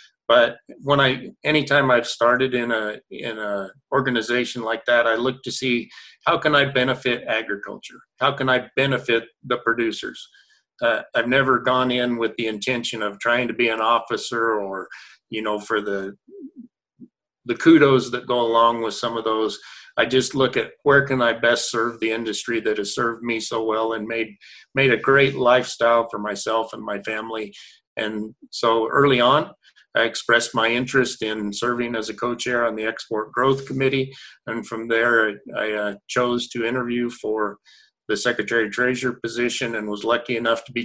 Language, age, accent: English, 40-59, American